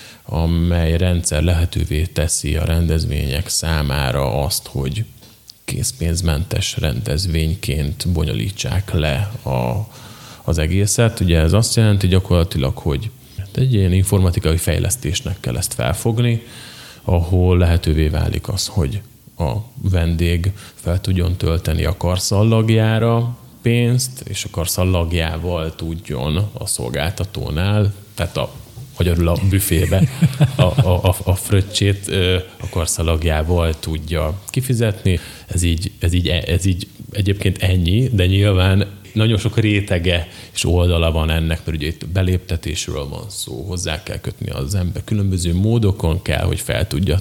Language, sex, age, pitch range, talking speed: Hungarian, male, 30-49, 85-105 Hz, 125 wpm